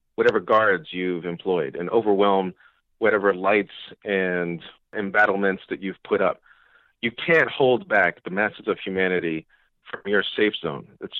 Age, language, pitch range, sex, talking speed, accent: 40-59, English, 100-135 Hz, male, 145 wpm, American